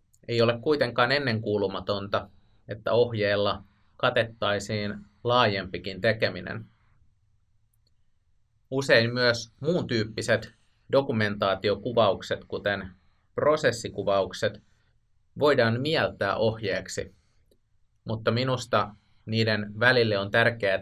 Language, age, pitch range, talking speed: Finnish, 30-49, 100-115 Hz, 75 wpm